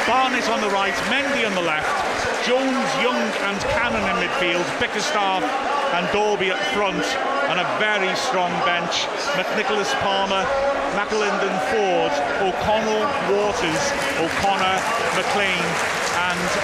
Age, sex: 30-49, male